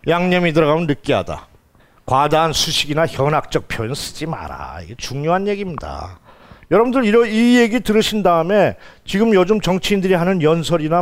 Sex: male